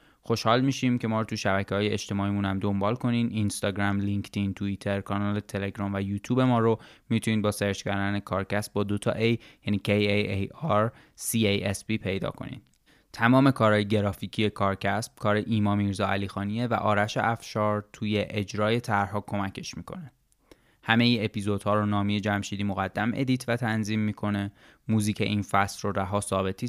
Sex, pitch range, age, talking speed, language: male, 100-110 Hz, 20-39, 155 wpm, Persian